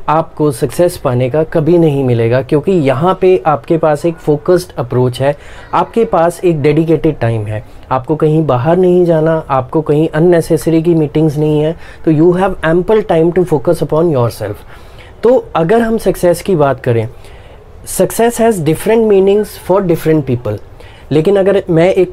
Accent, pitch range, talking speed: Indian, 130-180 Hz, 145 wpm